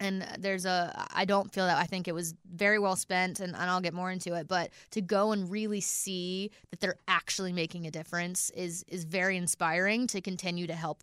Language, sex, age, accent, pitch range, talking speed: English, female, 20-39, American, 170-195 Hz, 225 wpm